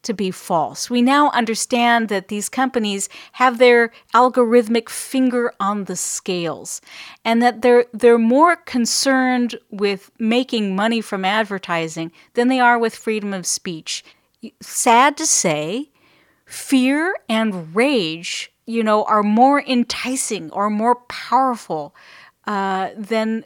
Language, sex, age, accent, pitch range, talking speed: English, female, 40-59, American, 195-240 Hz, 130 wpm